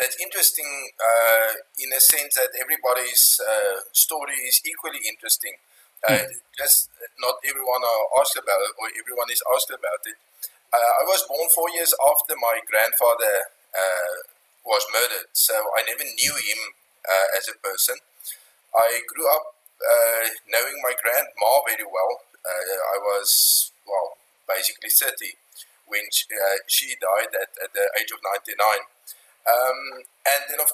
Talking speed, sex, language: 150 wpm, male, English